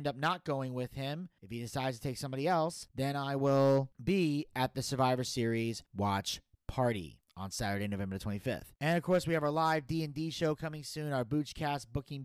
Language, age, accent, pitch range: English, 30-49, American, 130-160 Hz